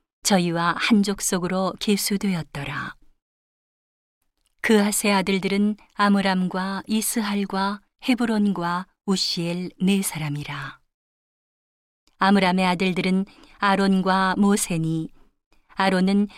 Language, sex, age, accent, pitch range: Korean, female, 40-59, native, 180-210 Hz